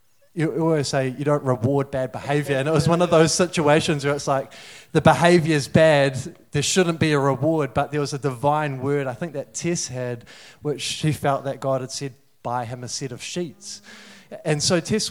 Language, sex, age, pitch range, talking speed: English, male, 20-39, 135-160 Hz, 210 wpm